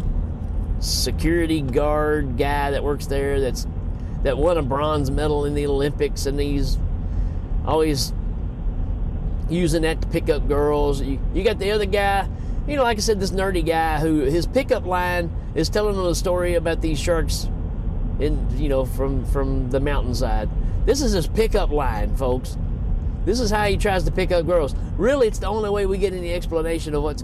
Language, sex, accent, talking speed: English, male, American, 185 wpm